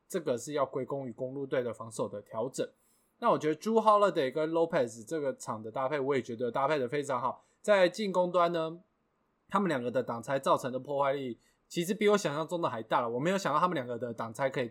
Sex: male